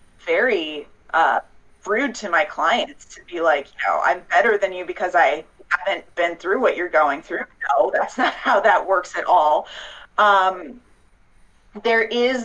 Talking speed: 170 wpm